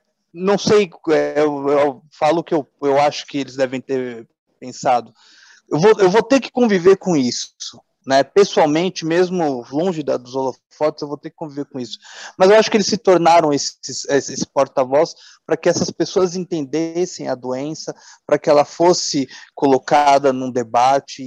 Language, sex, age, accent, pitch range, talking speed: Portuguese, male, 20-39, Brazilian, 135-180 Hz, 175 wpm